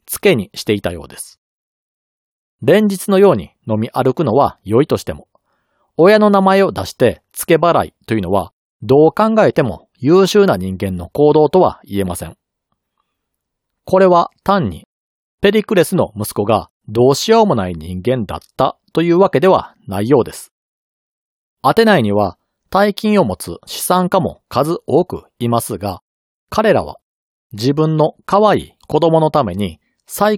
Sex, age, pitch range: male, 40-59, 115-195 Hz